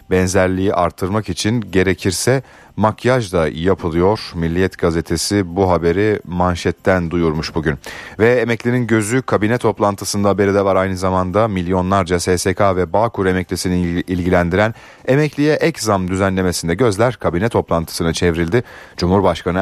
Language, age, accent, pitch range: Turkish, 40-59, native, 90-115 Hz